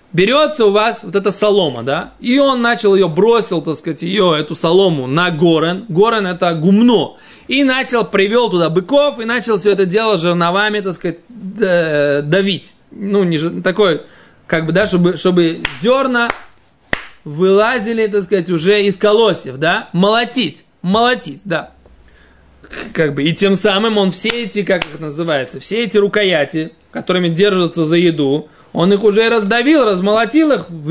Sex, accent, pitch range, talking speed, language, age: male, native, 175-235 Hz, 155 wpm, Russian, 20-39